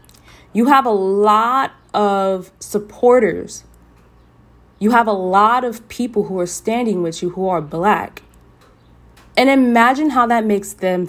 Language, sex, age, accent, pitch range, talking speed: English, female, 20-39, American, 155-235 Hz, 140 wpm